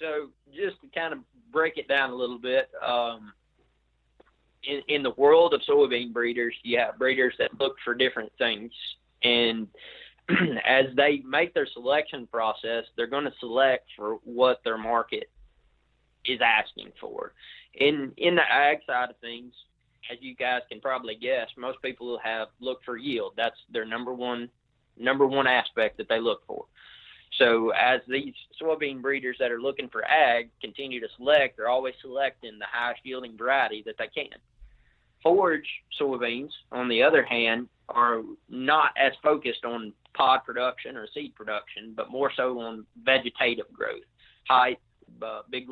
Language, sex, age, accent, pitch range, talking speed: English, male, 30-49, American, 120-140 Hz, 160 wpm